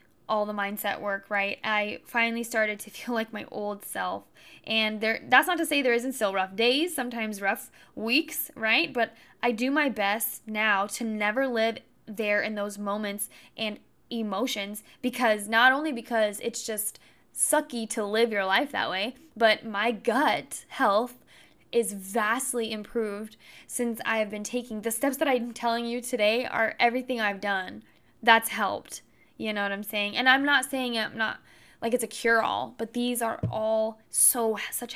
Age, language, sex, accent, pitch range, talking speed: 10-29, English, female, American, 210-245 Hz, 180 wpm